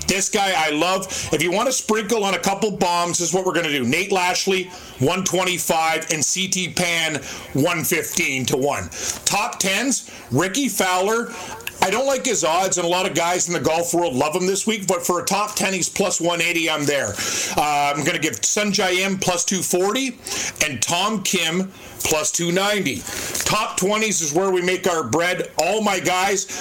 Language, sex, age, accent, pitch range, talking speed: English, male, 50-69, American, 170-195 Hz, 195 wpm